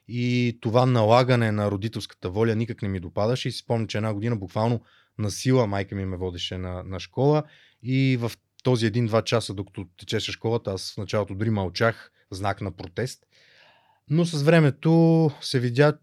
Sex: male